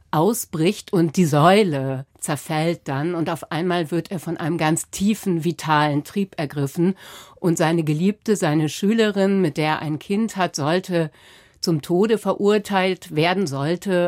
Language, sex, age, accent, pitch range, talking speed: German, female, 60-79, German, 150-190 Hz, 150 wpm